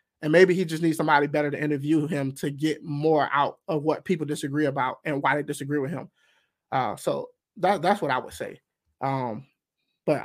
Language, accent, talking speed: English, American, 200 wpm